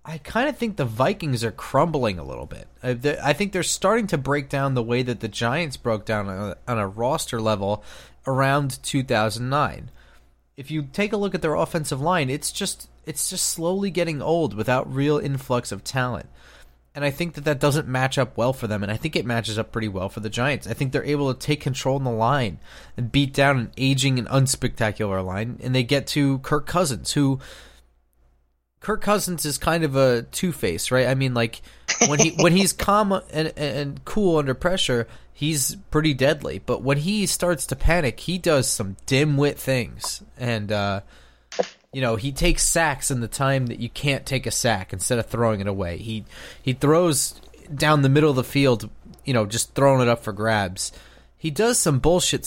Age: 30-49